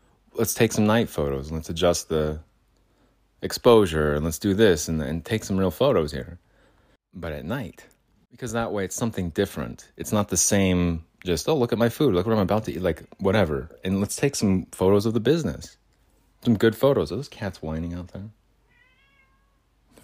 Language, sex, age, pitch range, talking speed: English, male, 30-49, 75-100 Hz, 200 wpm